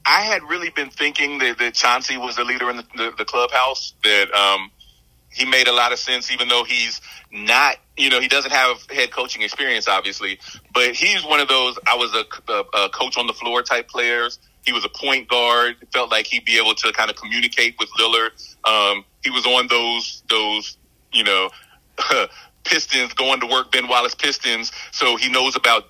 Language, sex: English, male